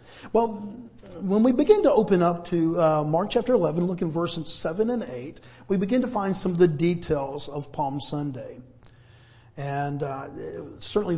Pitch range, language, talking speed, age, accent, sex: 145-175 Hz, English, 170 wpm, 50-69, American, male